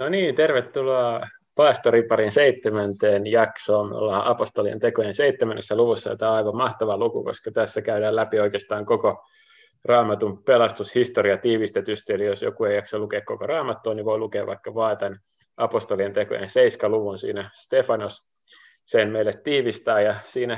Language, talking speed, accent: Finnish, 145 wpm, native